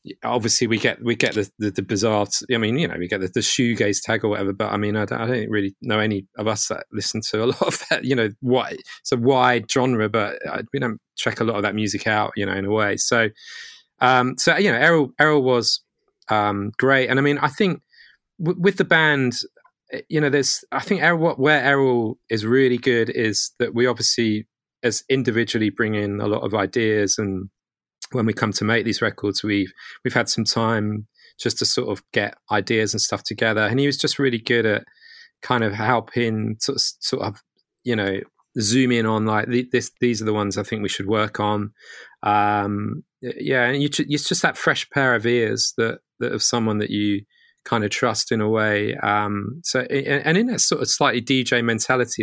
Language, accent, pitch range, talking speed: English, British, 105-130 Hz, 215 wpm